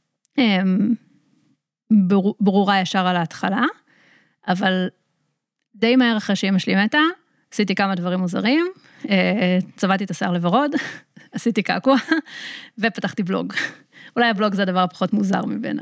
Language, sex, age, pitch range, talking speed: Hebrew, female, 30-49, 185-230 Hz, 115 wpm